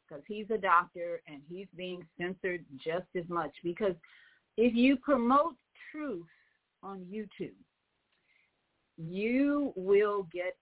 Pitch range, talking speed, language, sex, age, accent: 170-220 Hz, 120 wpm, English, female, 50-69, American